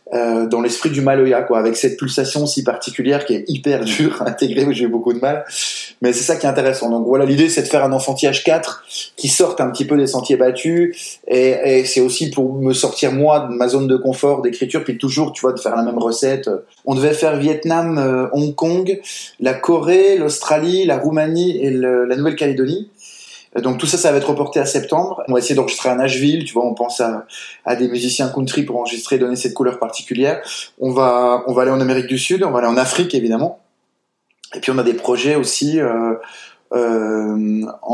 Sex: male